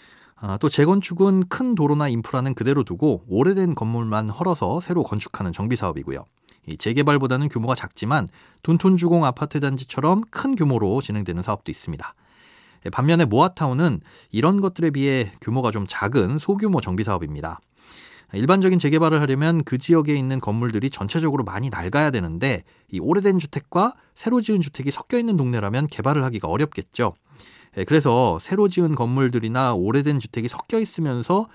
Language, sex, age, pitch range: Korean, male, 30-49, 110-165 Hz